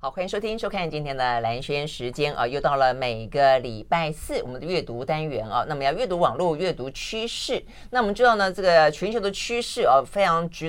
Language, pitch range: Chinese, 140-185 Hz